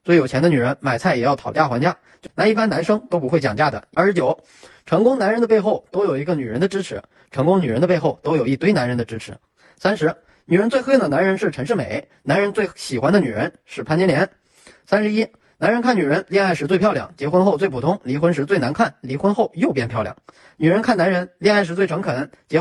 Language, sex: Chinese, male